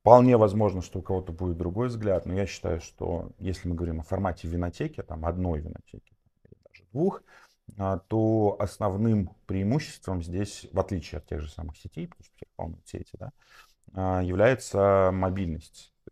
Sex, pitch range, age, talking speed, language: male, 85-100 Hz, 30-49, 155 wpm, Russian